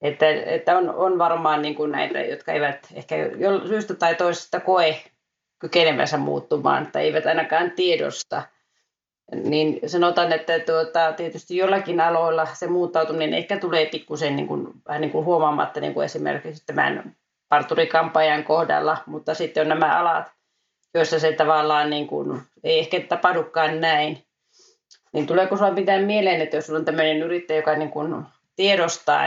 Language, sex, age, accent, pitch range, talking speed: Finnish, female, 30-49, native, 155-175 Hz, 145 wpm